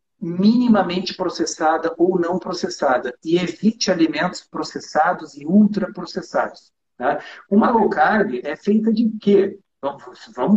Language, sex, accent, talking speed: Portuguese, male, Brazilian, 110 wpm